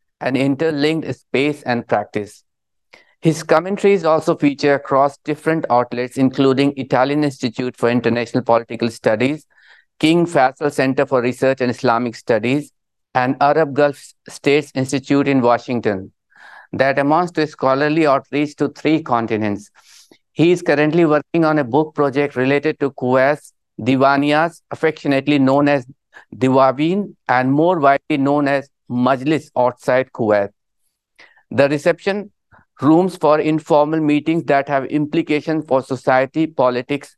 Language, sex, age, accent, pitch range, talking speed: English, male, 50-69, Indian, 125-150 Hz, 125 wpm